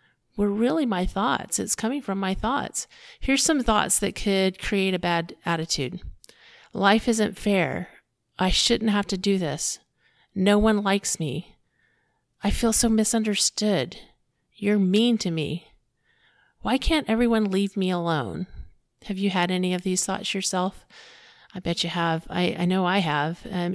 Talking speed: 160 wpm